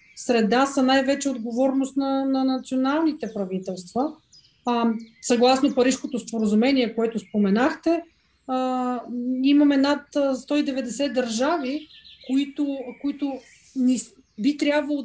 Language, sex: Bulgarian, female